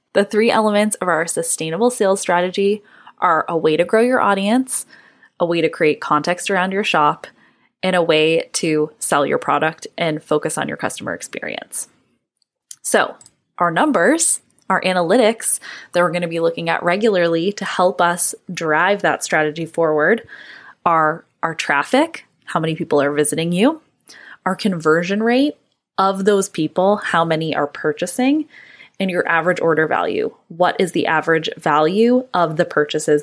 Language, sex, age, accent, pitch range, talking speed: English, female, 20-39, American, 165-210 Hz, 160 wpm